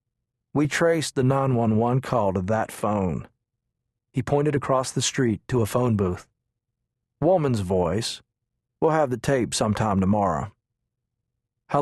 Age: 40-59